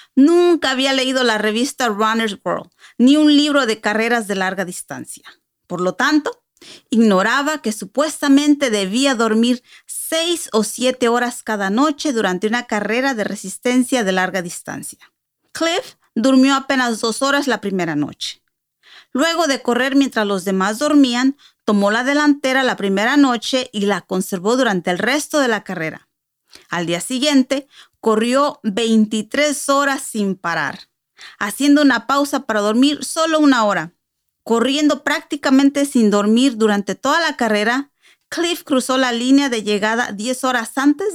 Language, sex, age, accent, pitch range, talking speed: English, female, 40-59, American, 210-280 Hz, 145 wpm